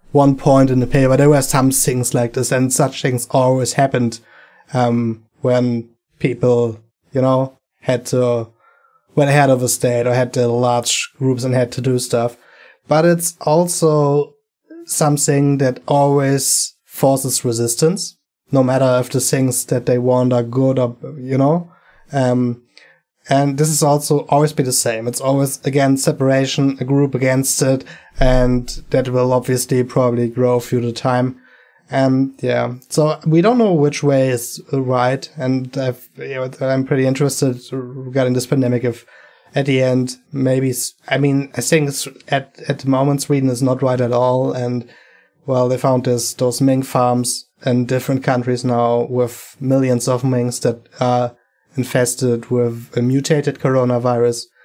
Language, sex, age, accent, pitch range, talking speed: English, male, 20-39, German, 125-140 Hz, 160 wpm